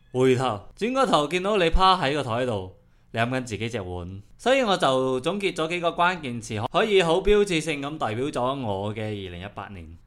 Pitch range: 100-155 Hz